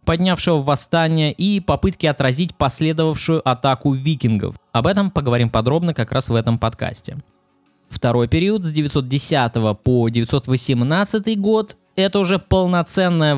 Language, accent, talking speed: Russian, native, 120 wpm